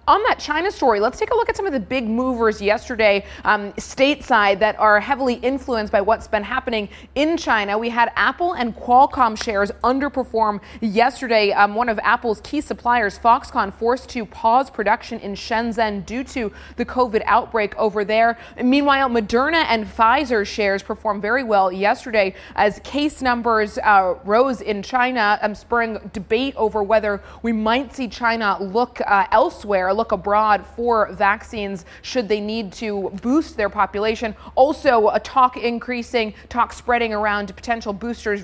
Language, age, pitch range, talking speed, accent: English, 30-49, 210-250 Hz, 160 wpm, American